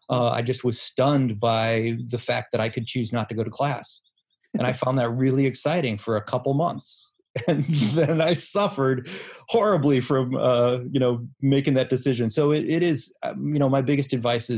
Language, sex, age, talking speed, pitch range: English, male, 30-49, 200 wpm, 115-145 Hz